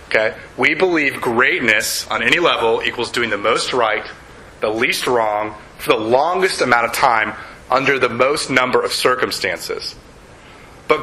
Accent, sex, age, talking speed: American, male, 30-49, 145 wpm